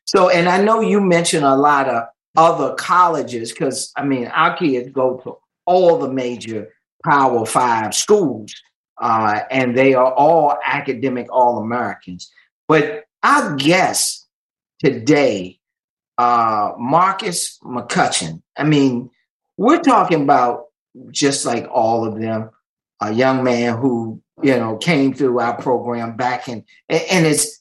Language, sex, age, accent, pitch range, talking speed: English, male, 40-59, American, 125-195 Hz, 135 wpm